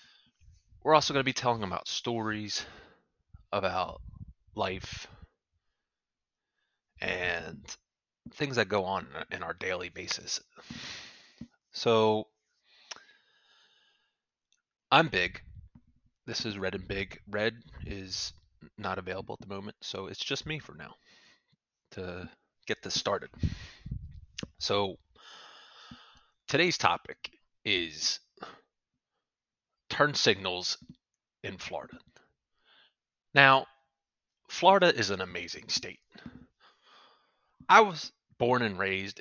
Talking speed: 95 wpm